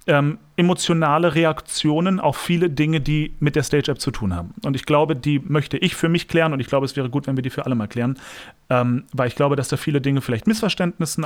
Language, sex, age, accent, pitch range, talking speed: German, male, 40-59, German, 130-170 Hz, 240 wpm